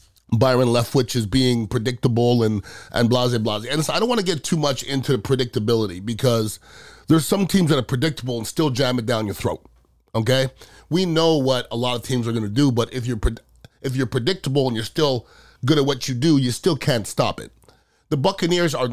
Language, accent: English, American